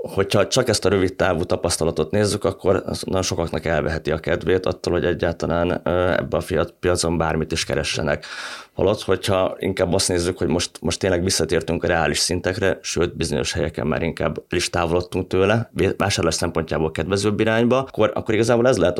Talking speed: 175 wpm